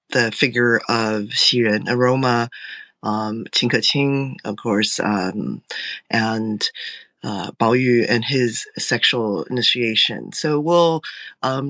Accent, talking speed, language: American, 115 wpm, English